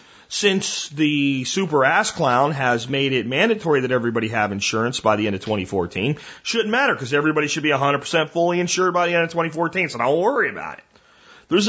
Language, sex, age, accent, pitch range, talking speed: English, male, 40-59, American, 120-170 Hz, 190 wpm